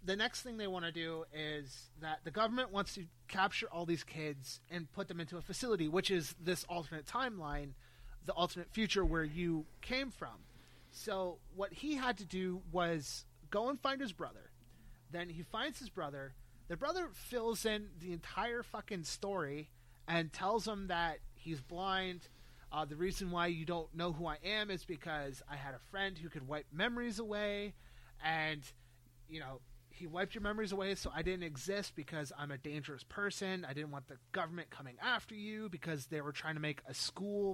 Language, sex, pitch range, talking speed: English, male, 150-205 Hz, 190 wpm